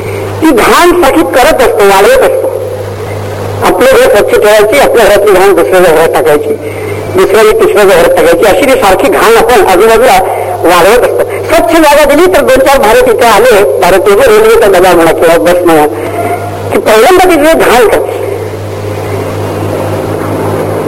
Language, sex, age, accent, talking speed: Marathi, female, 60-79, native, 145 wpm